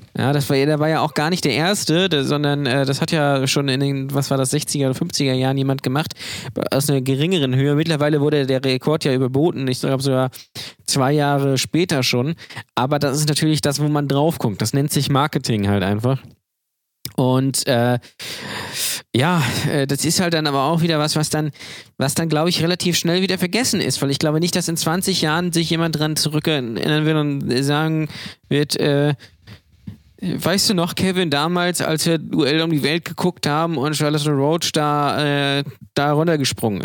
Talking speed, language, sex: 195 wpm, German, male